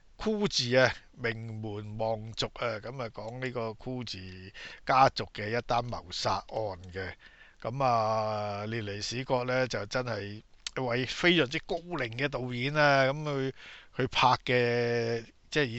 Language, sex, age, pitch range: Chinese, male, 50-69, 105-125 Hz